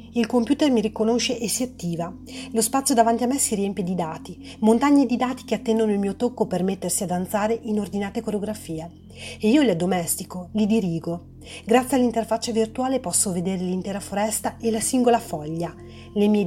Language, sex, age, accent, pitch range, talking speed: Italian, female, 30-49, native, 175-235 Hz, 180 wpm